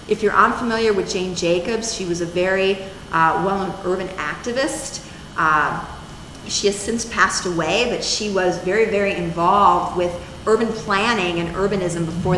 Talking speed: 155 wpm